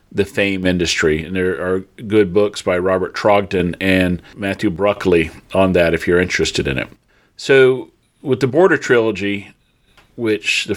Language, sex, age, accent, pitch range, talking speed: English, male, 40-59, American, 100-120 Hz, 155 wpm